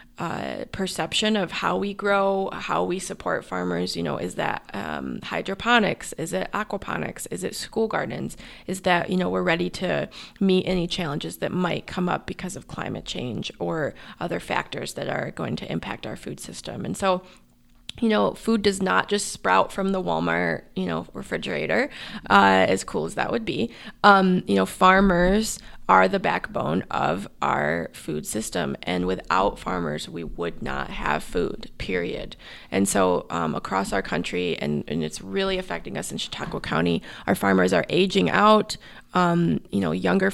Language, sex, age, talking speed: English, female, 20-39, 175 wpm